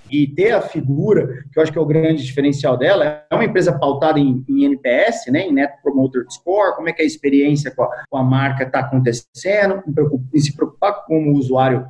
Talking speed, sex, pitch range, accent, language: 235 wpm, male, 140-200 Hz, Brazilian, Portuguese